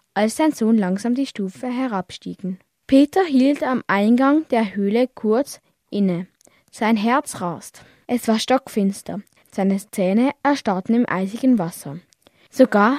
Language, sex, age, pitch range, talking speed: German, female, 10-29, 190-260 Hz, 130 wpm